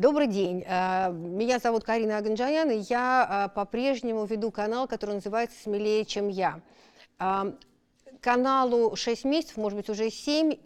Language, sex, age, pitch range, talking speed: Russian, female, 40-59, 205-250 Hz, 130 wpm